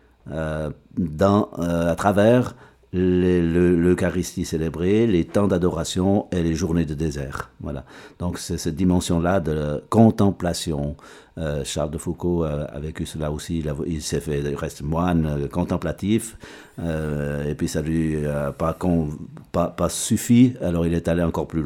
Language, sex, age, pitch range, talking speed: French, male, 60-79, 80-105 Hz, 175 wpm